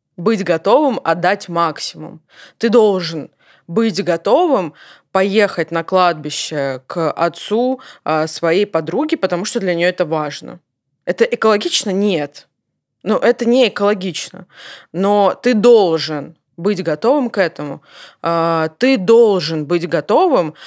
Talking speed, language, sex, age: 115 wpm, Russian, female, 20-39